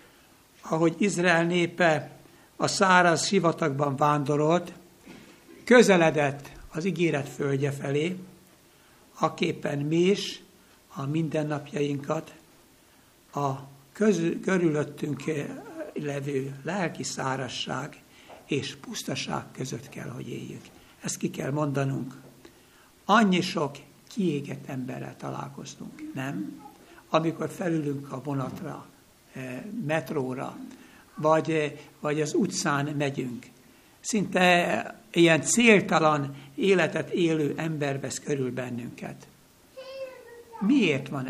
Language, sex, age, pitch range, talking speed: Hungarian, male, 60-79, 140-170 Hz, 85 wpm